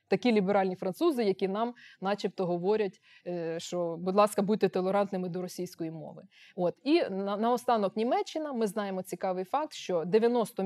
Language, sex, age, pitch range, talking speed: Ukrainian, female, 20-39, 185-235 Hz, 140 wpm